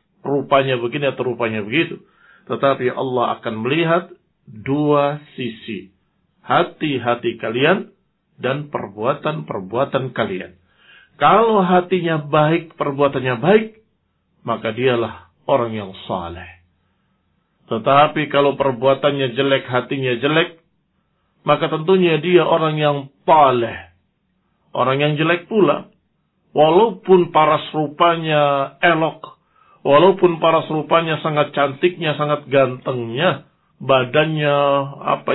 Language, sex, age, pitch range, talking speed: Indonesian, male, 50-69, 130-175 Hz, 95 wpm